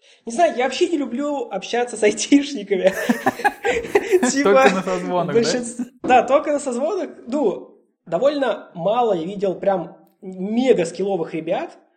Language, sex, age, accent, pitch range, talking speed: Russian, male, 20-39, native, 180-230 Hz, 120 wpm